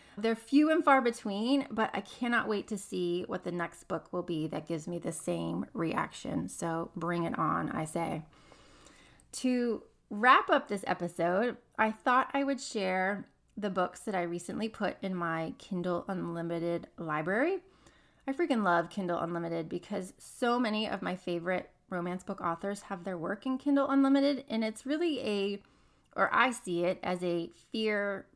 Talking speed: 170 wpm